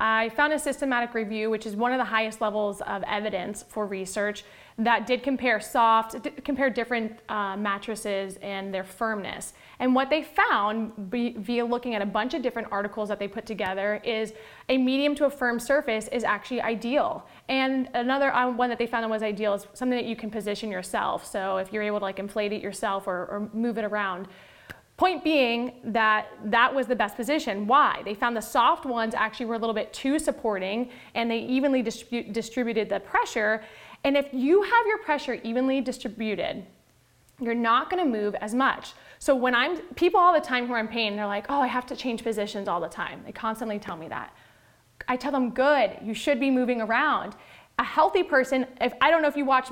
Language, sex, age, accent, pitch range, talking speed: English, female, 20-39, American, 210-260 Hz, 205 wpm